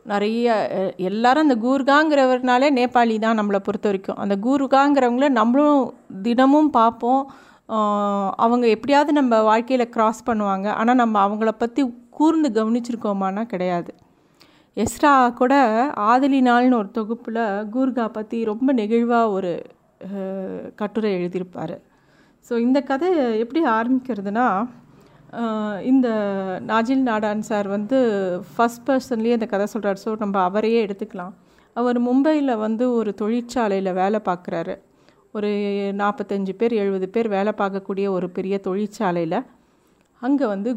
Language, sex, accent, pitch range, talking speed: Tamil, female, native, 200-250 Hz, 115 wpm